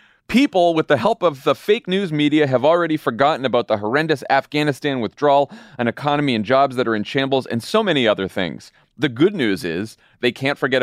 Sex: male